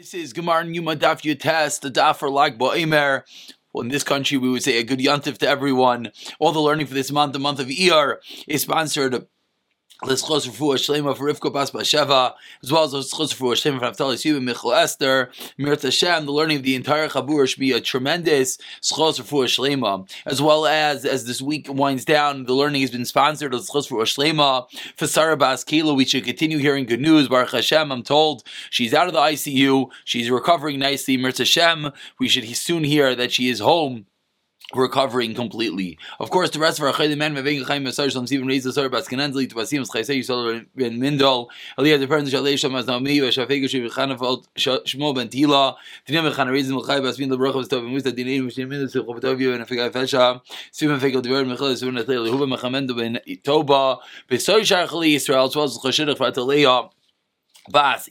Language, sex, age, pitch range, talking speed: English, male, 30-49, 130-150 Hz, 90 wpm